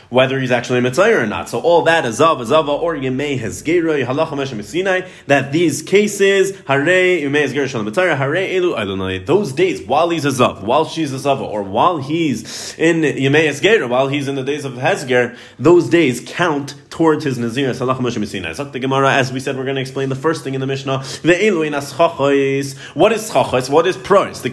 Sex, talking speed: male, 215 wpm